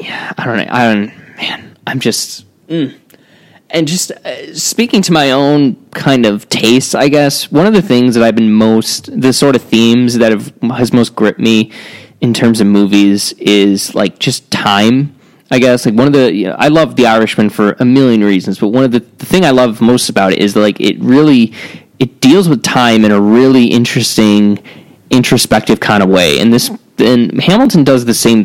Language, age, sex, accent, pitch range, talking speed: English, 20-39, male, American, 105-130 Hz, 205 wpm